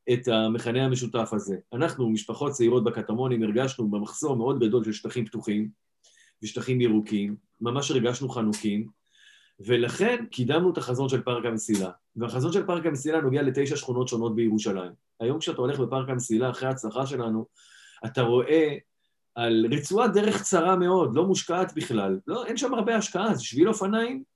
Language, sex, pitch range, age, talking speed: Hebrew, male, 125-175 Hz, 30-49, 155 wpm